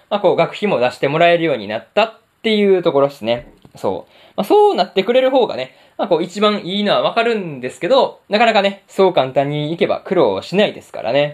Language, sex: Japanese, male